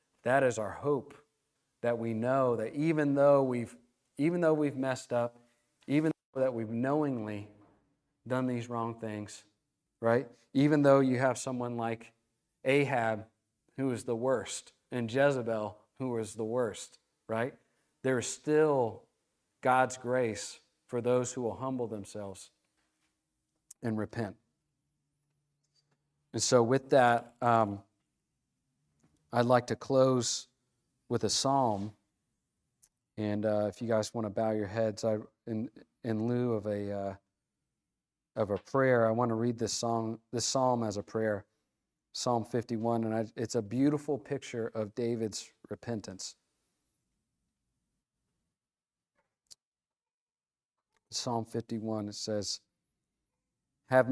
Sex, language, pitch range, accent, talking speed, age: male, English, 110-135 Hz, American, 130 wpm, 40-59